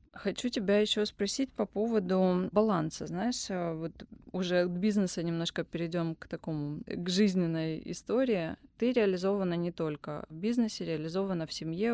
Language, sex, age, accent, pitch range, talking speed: Russian, female, 20-39, native, 160-215 Hz, 140 wpm